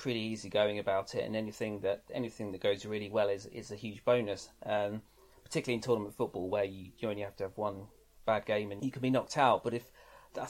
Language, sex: English, male